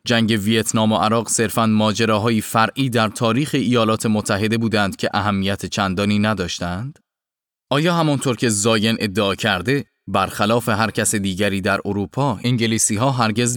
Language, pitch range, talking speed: Persian, 100-120 Hz, 135 wpm